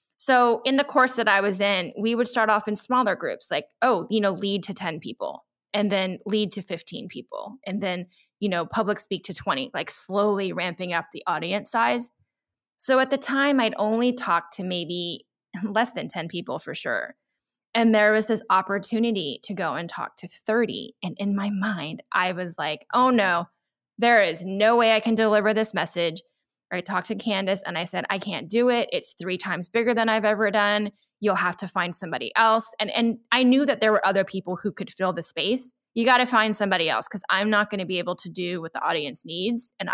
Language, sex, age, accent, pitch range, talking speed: English, female, 20-39, American, 185-230 Hz, 220 wpm